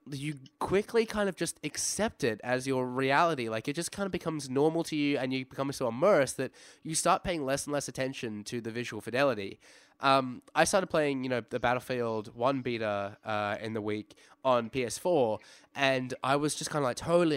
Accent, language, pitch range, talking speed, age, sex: Australian, English, 115-150 Hz, 205 wpm, 10-29, male